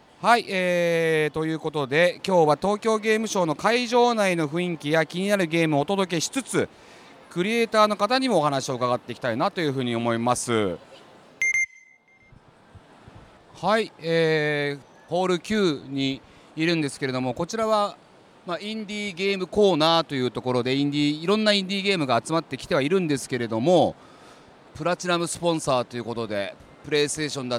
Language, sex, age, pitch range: Japanese, male, 40-59, 130-195 Hz